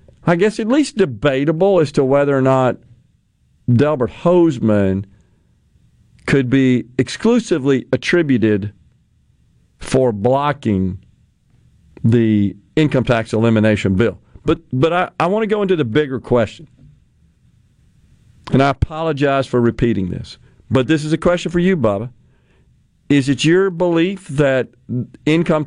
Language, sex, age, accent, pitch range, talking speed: English, male, 50-69, American, 115-155 Hz, 125 wpm